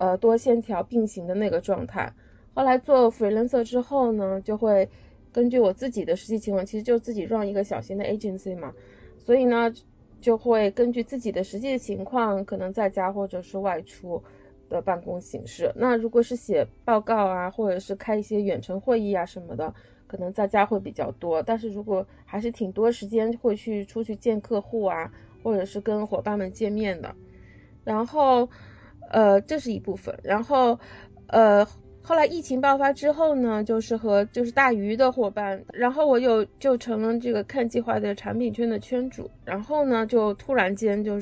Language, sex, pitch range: Chinese, female, 200-240 Hz